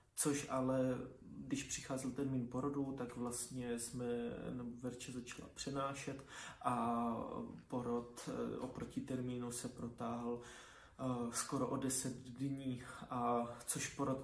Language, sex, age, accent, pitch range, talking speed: Czech, male, 20-39, native, 125-140 Hz, 105 wpm